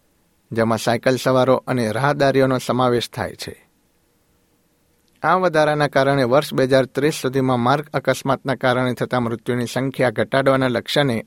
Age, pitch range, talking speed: 60-79, 120-145 Hz, 120 wpm